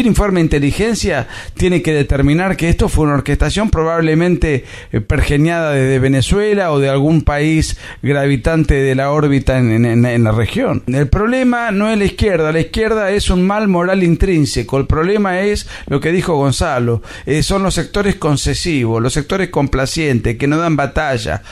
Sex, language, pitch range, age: male, Spanish, 140-190 Hz, 40-59